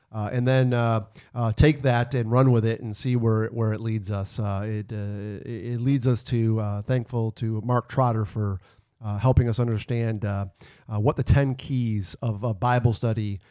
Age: 40-59